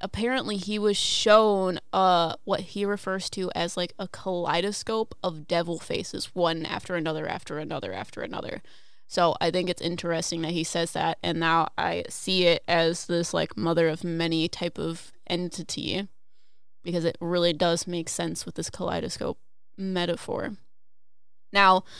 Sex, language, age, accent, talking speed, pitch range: female, English, 20-39, American, 155 wpm, 170-210 Hz